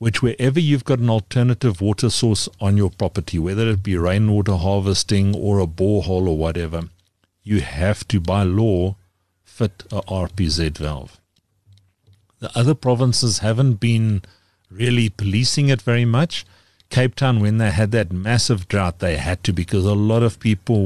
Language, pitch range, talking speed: English, 95-115 Hz, 160 wpm